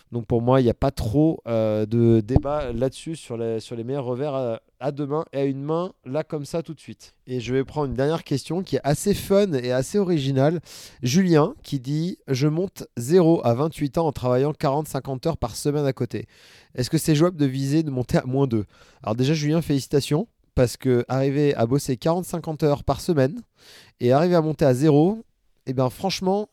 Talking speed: 215 wpm